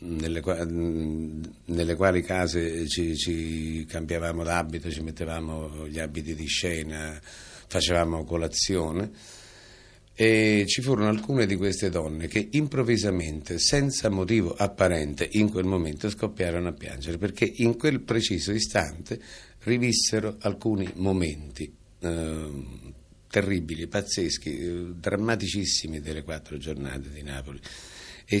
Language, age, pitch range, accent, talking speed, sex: Italian, 60-79, 80-100 Hz, native, 110 wpm, male